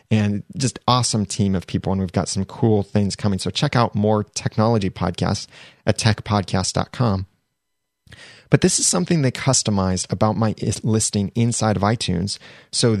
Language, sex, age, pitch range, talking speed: English, male, 30-49, 100-125 Hz, 155 wpm